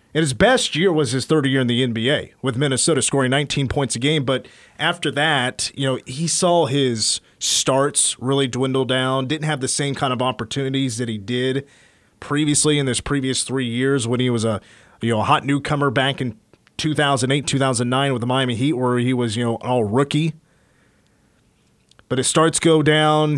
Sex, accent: male, American